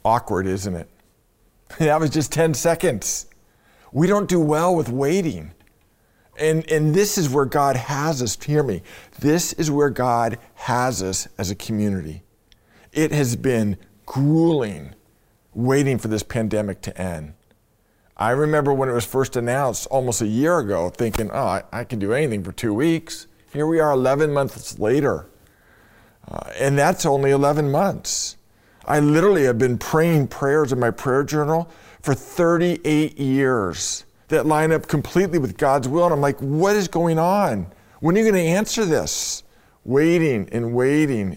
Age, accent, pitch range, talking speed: 50-69, American, 115-155 Hz, 160 wpm